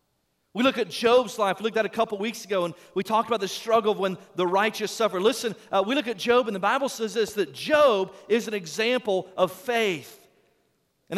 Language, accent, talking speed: English, American, 225 wpm